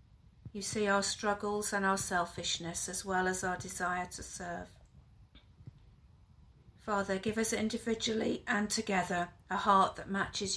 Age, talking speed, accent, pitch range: 40-59, 135 wpm, British, 180-205 Hz